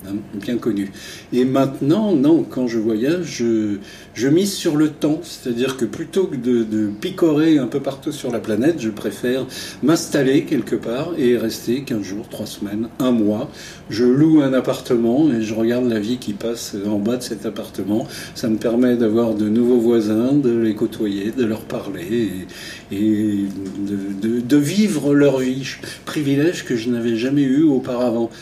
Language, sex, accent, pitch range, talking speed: French, male, French, 115-135 Hz, 175 wpm